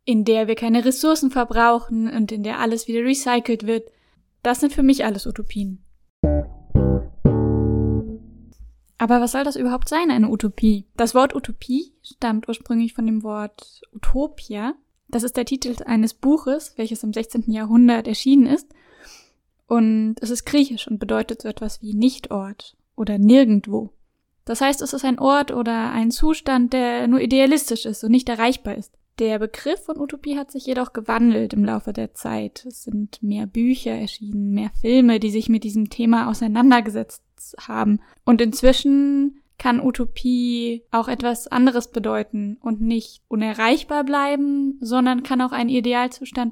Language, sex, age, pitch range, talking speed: German, female, 10-29, 220-255 Hz, 155 wpm